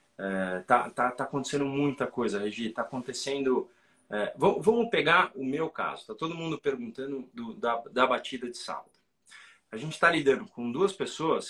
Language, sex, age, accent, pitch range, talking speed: Portuguese, male, 40-59, Brazilian, 120-190 Hz, 175 wpm